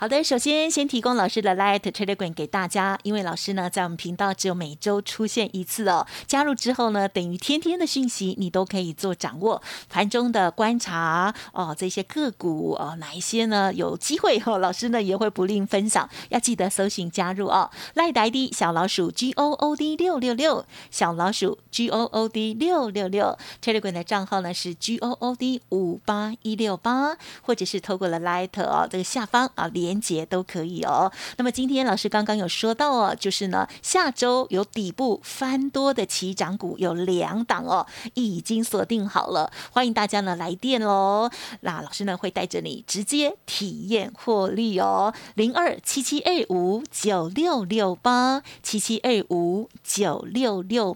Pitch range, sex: 185-245 Hz, female